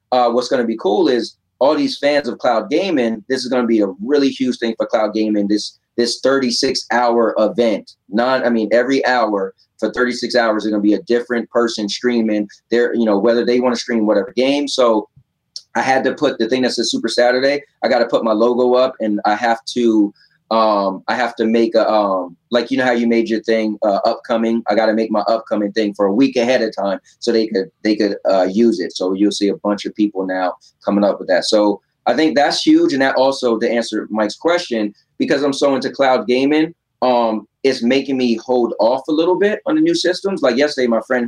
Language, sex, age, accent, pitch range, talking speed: English, male, 30-49, American, 110-135 Hz, 240 wpm